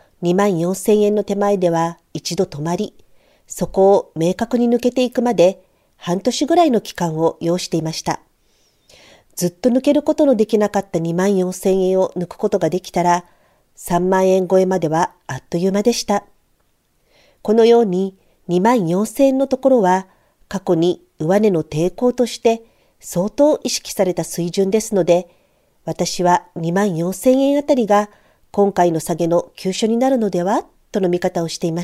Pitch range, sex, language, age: 175-230 Hz, female, Japanese, 40-59